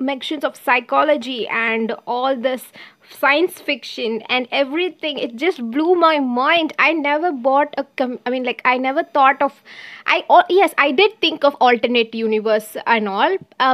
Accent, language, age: Indian, English, 20-39